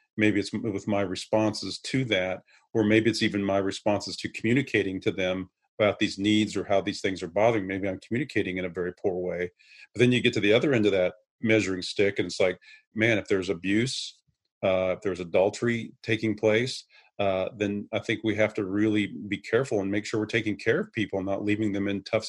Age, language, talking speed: 40-59, English, 225 wpm